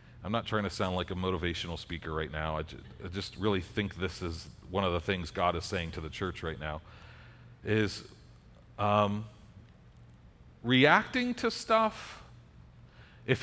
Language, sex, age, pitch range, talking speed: English, male, 40-59, 95-135 Hz, 160 wpm